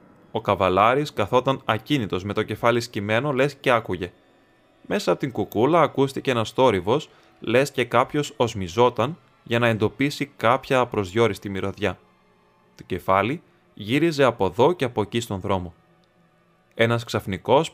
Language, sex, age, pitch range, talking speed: Greek, male, 20-39, 100-135 Hz, 135 wpm